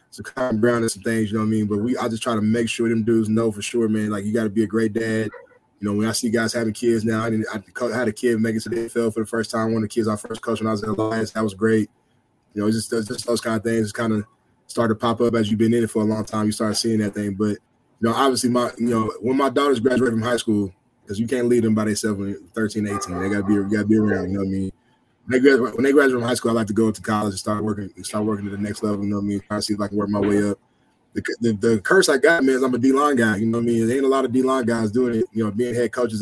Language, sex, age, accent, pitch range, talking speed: English, male, 10-29, American, 105-115 Hz, 350 wpm